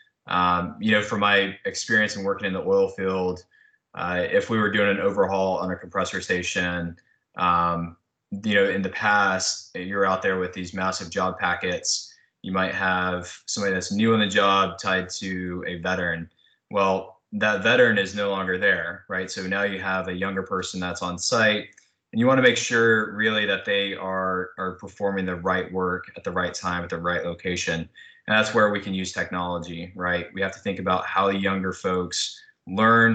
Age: 20-39